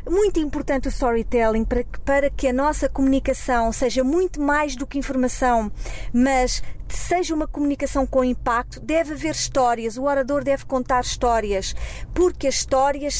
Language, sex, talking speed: Portuguese, female, 155 wpm